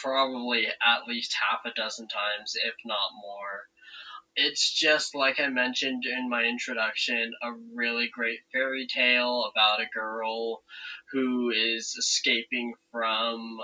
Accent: American